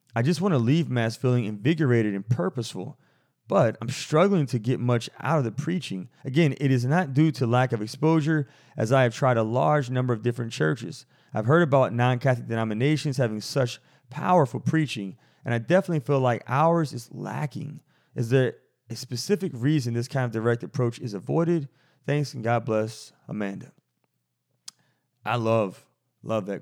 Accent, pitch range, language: American, 110-140 Hz, English